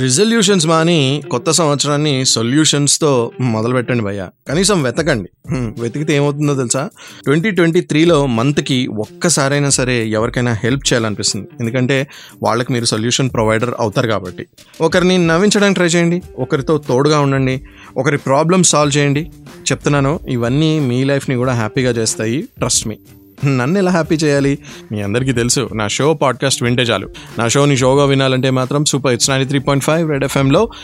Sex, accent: male, native